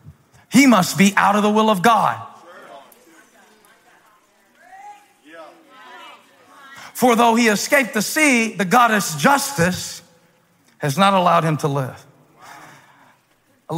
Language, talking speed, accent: English, 110 wpm, American